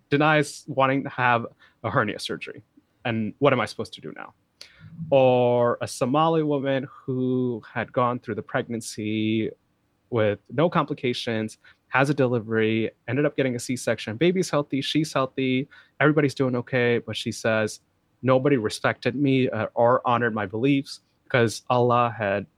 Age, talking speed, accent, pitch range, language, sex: 30-49, 150 wpm, American, 110-140 Hz, English, male